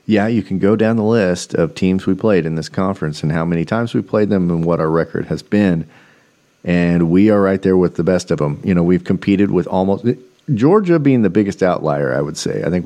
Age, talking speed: 40-59, 245 wpm